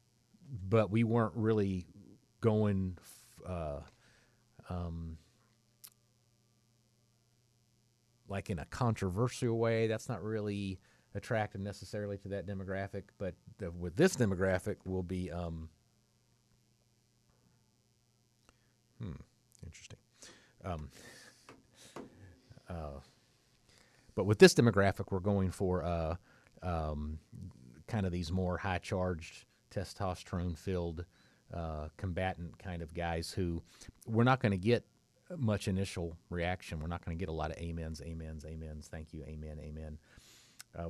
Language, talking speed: English, 110 wpm